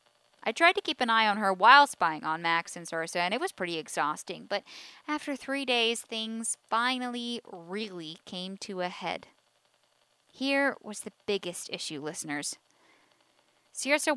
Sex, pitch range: female, 180-260 Hz